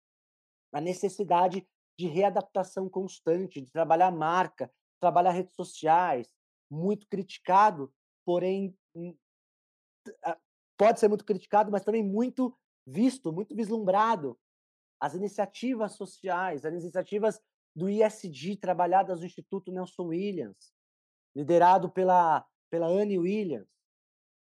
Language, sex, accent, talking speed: Portuguese, male, Brazilian, 100 wpm